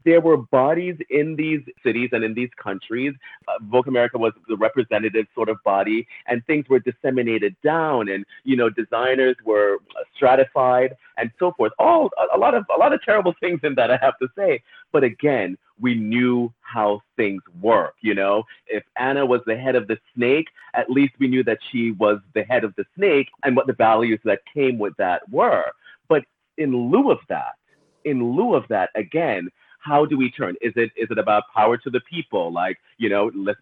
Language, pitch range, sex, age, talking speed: English, 110-140 Hz, male, 30-49, 205 wpm